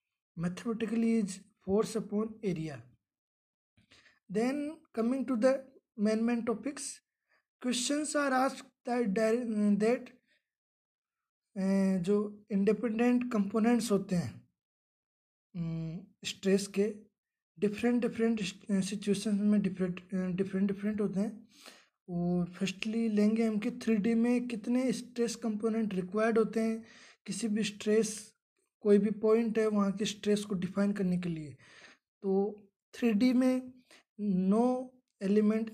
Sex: male